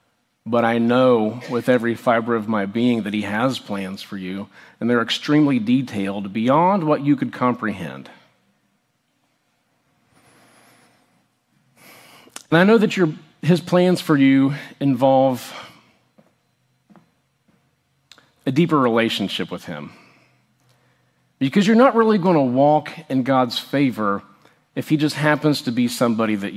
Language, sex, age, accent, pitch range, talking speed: English, male, 40-59, American, 115-145 Hz, 125 wpm